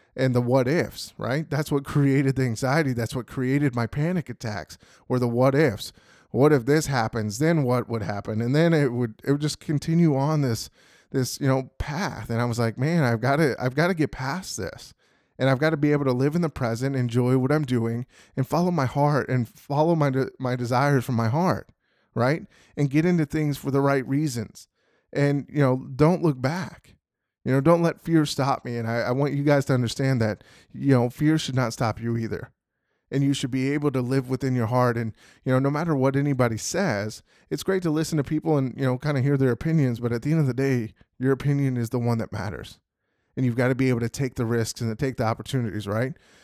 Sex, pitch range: male, 120-145 Hz